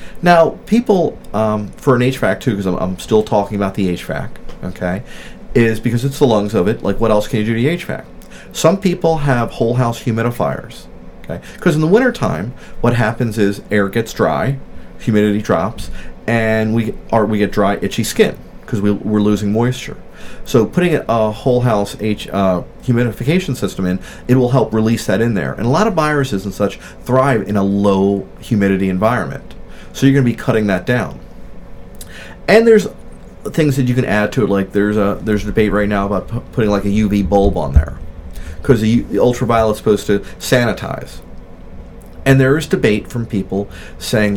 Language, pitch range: English, 100-125 Hz